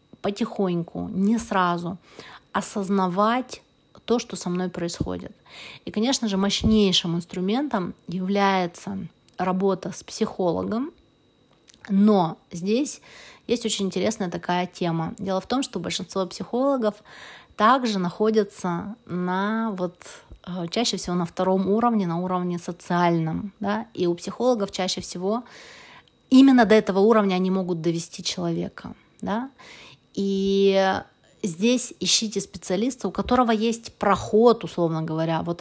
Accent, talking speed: native, 110 wpm